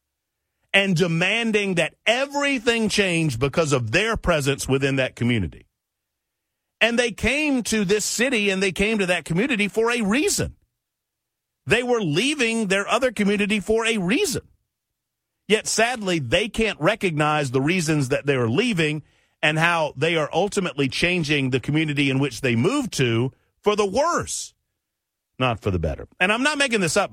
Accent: American